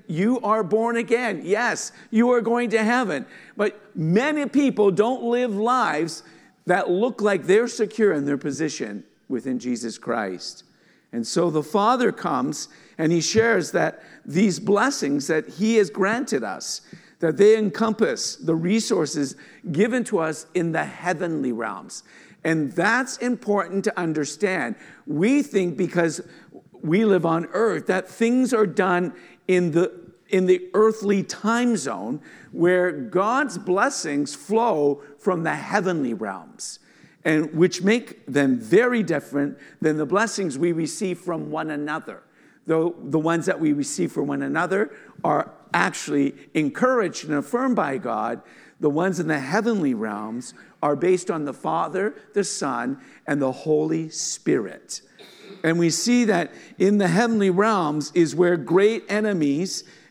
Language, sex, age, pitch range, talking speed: English, male, 50-69, 160-220 Hz, 145 wpm